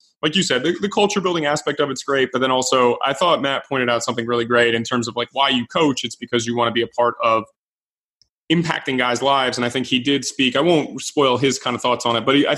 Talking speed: 275 wpm